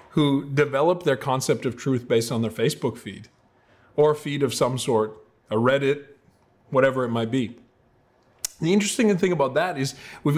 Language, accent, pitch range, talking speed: English, American, 125-195 Hz, 170 wpm